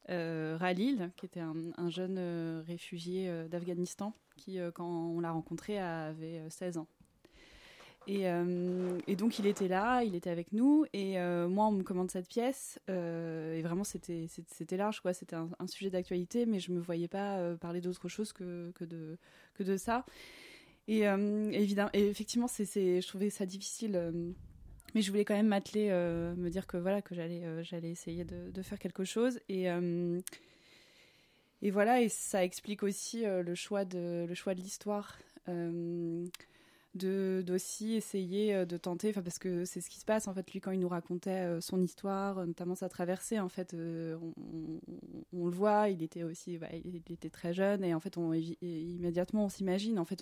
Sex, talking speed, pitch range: female, 200 wpm, 170-195 Hz